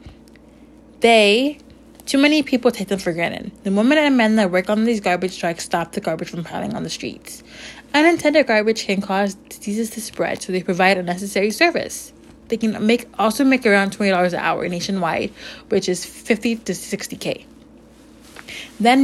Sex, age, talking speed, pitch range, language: female, 20-39, 175 wpm, 195-250 Hz, English